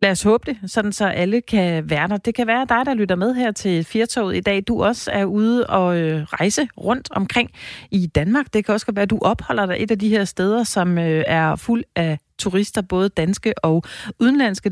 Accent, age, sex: native, 30-49, female